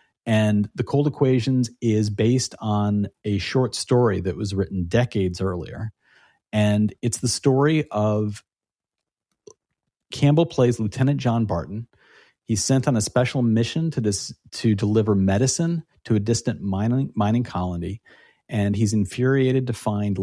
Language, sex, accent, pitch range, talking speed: English, male, American, 100-125 Hz, 140 wpm